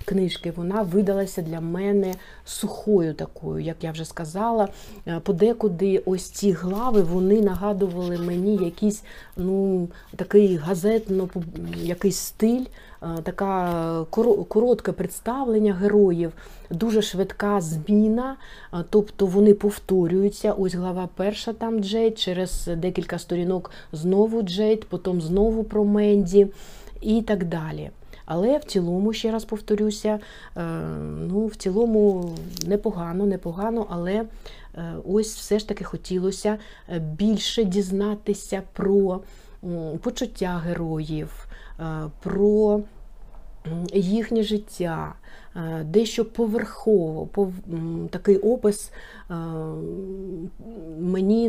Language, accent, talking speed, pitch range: Ukrainian, native, 95 wpm, 175-210 Hz